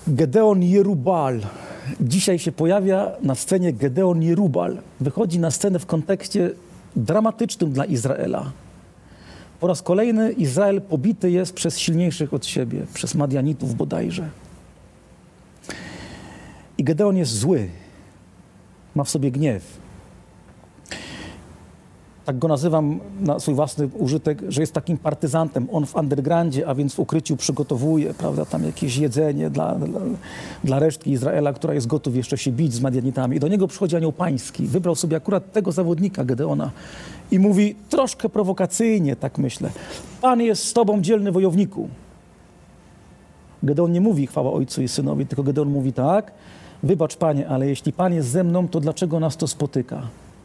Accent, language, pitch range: native, Polish, 140-185 Hz